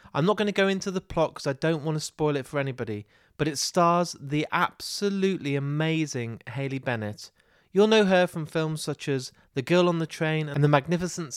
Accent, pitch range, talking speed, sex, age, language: British, 130-170 Hz, 210 wpm, male, 30-49, English